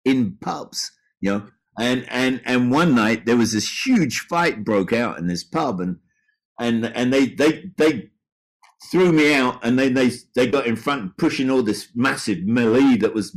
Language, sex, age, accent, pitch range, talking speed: English, male, 50-69, British, 115-155 Hz, 190 wpm